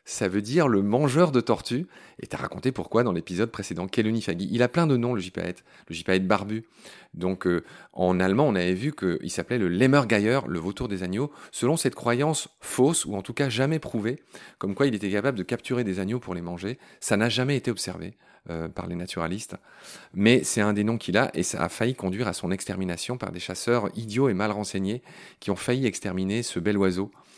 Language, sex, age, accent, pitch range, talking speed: French, male, 40-59, French, 95-130 Hz, 220 wpm